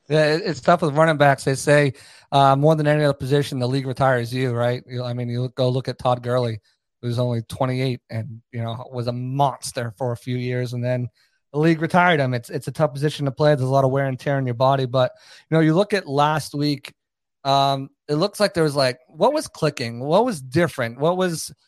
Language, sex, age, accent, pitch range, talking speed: English, male, 30-49, American, 130-150 Hz, 240 wpm